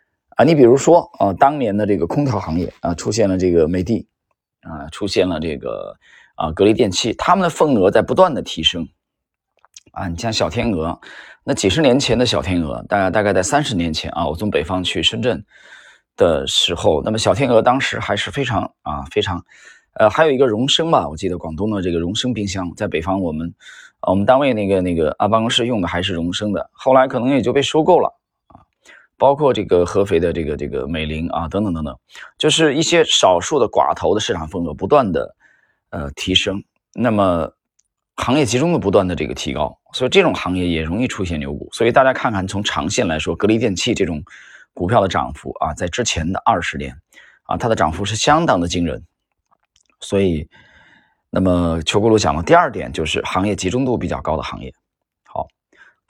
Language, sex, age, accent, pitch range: Chinese, male, 20-39, native, 85-115 Hz